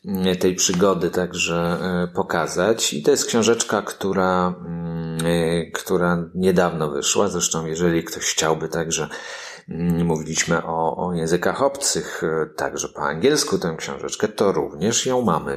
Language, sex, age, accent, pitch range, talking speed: Polish, male, 40-59, native, 80-95 Hz, 120 wpm